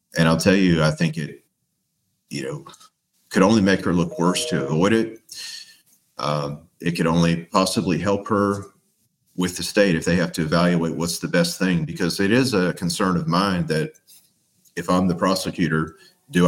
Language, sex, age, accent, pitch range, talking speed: English, male, 40-59, American, 80-100 Hz, 180 wpm